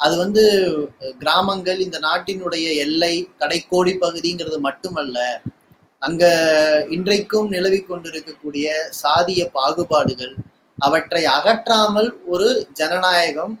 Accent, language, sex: native, Tamil, male